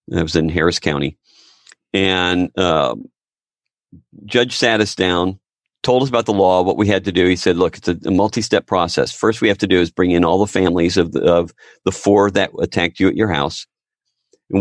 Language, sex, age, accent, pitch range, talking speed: English, male, 50-69, American, 95-120 Hz, 215 wpm